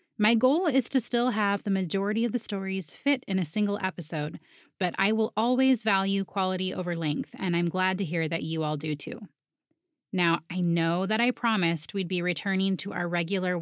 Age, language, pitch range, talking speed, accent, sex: 20-39, English, 175-235 Hz, 205 wpm, American, female